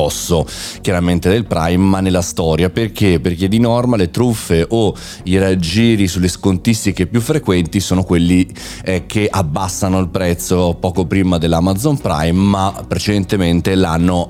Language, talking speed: Italian, 140 wpm